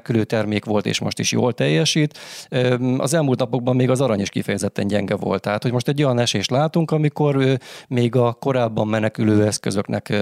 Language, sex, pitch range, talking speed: Hungarian, male, 105-125 Hz, 180 wpm